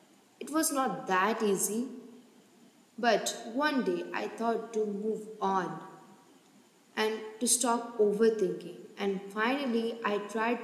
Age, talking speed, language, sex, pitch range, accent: 20-39, 120 wpm, English, female, 215-250 Hz, Indian